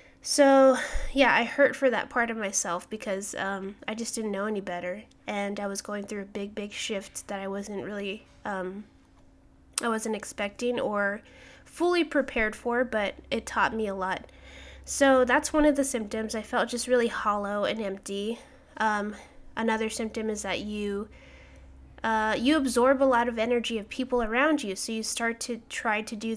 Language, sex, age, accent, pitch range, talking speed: English, female, 20-39, American, 200-240 Hz, 185 wpm